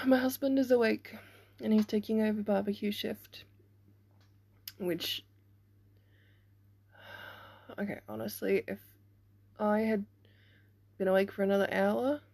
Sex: female